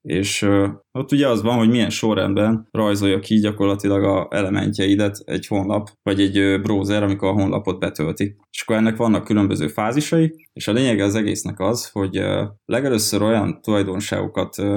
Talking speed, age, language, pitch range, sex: 155 wpm, 20-39, Hungarian, 100-110 Hz, male